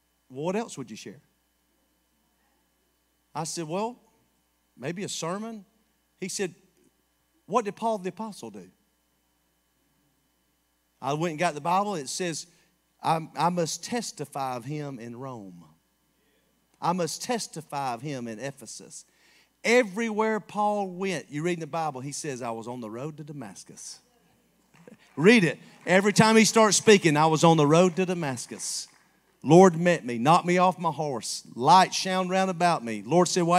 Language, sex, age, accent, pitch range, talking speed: English, male, 40-59, American, 145-205 Hz, 160 wpm